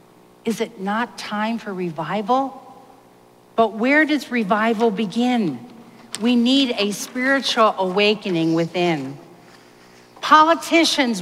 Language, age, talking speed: English, 50-69, 95 wpm